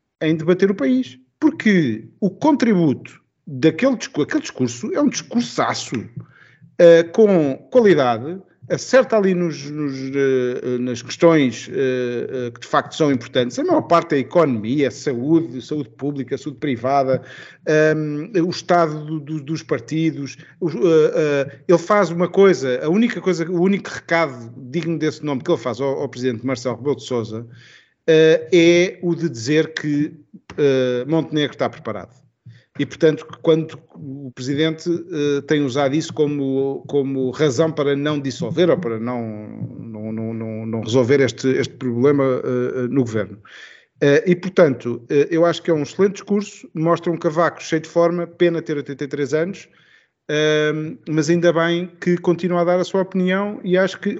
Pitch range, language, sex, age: 130-170 Hz, Portuguese, male, 50-69